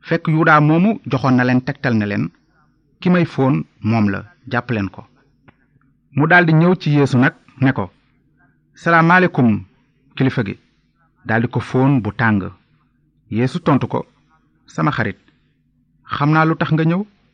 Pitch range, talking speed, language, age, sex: 120-155 Hz, 105 wpm, Italian, 30-49, male